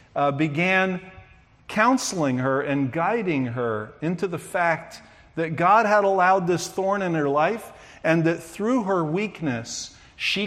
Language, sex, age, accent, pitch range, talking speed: English, male, 50-69, American, 130-170 Hz, 145 wpm